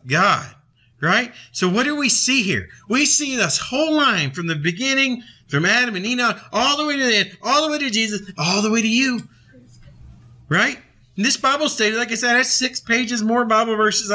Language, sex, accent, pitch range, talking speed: English, male, American, 150-240 Hz, 210 wpm